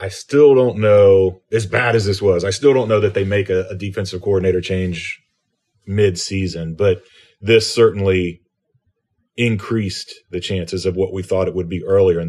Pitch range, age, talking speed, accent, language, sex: 95-115 Hz, 30-49, 180 wpm, American, English, male